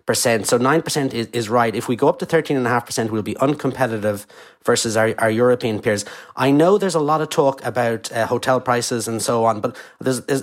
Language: English